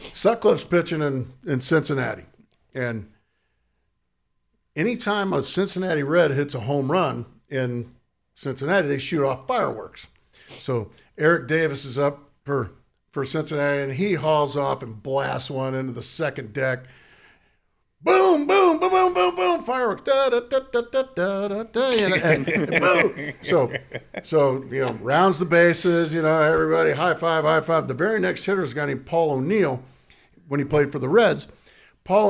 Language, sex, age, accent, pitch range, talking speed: English, male, 50-69, American, 140-195 Hz, 145 wpm